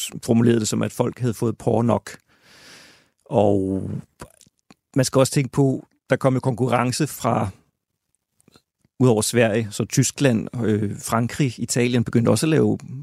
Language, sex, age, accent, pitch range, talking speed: Danish, male, 40-59, native, 110-135 Hz, 145 wpm